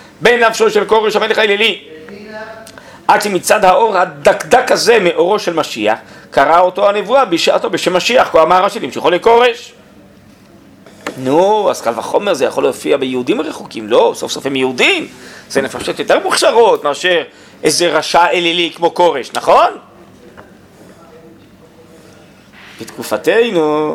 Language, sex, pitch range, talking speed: Hebrew, male, 155-230 Hz, 125 wpm